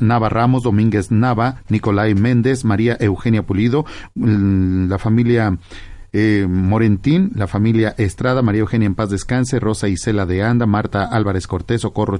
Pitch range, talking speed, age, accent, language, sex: 100-120 Hz, 145 wpm, 40-59, Mexican, Spanish, male